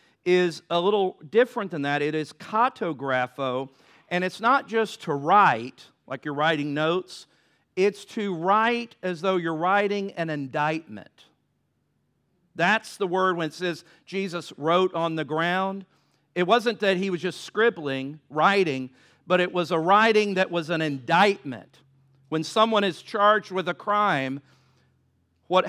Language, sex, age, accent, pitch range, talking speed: English, male, 50-69, American, 160-205 Hz, 150 wpm